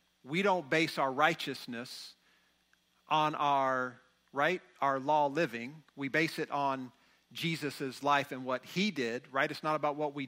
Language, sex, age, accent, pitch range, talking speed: English, male, 50-69, American, 140-165 Hz, 160 wpm